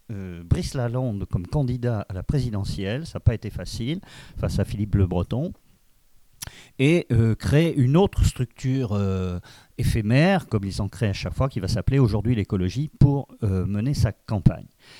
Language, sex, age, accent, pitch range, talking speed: French, male, 50-69, French, 105-140 Hz, 170 wpm